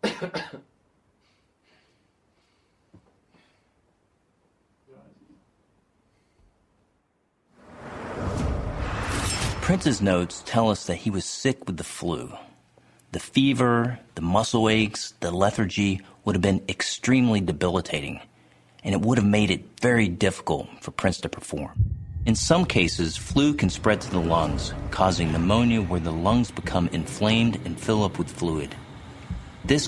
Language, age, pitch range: English, 40-59, 85-115 Hz